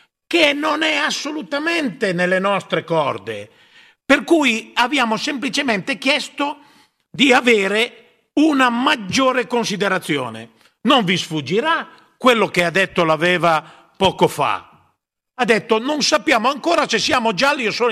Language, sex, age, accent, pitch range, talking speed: Italian, male, 50-69, native, 170-235 Hz, 125 wpm